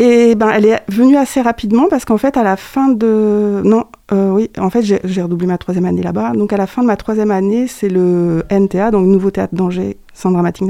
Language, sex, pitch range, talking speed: French, female, 180-210 Hz, 240 wpm